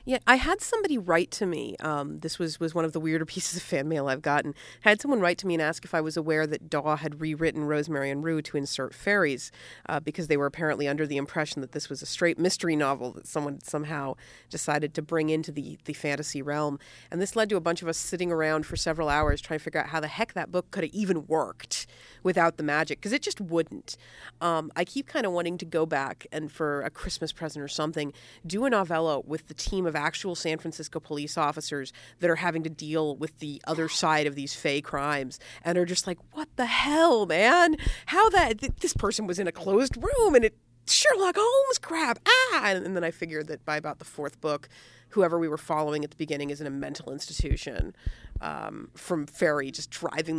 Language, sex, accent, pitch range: English, female, American, 145-175 Hz